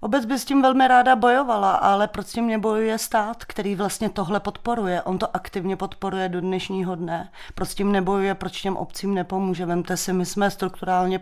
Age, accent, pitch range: 30-49, native, 175-200 Hz